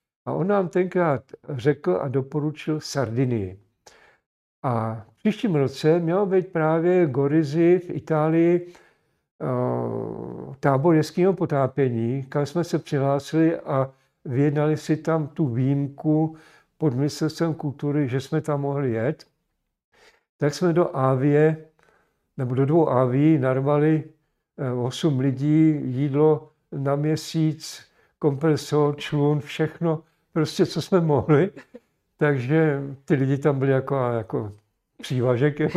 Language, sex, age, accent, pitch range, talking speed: Czech, male, 50-69, native, 135-160 Hz, 115 wpm